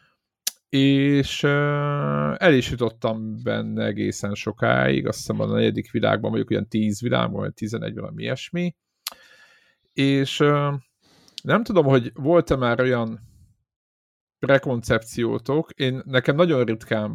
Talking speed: 110 wpm